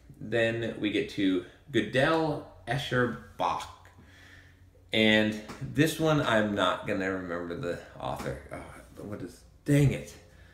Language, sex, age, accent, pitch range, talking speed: English, male, 30-49, American, 90-130 Hz, 115 wpm